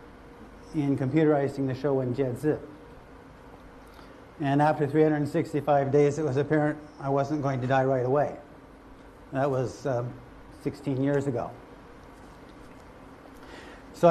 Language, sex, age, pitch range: Chinese, male, 60-79, 135-155 Hz